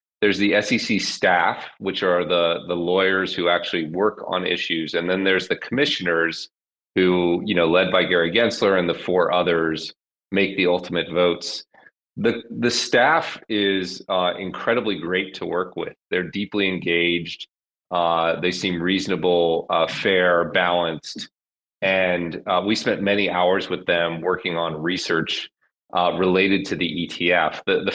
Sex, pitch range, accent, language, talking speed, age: male, 85-95 Hz, American, English, 155 wpm, 30-49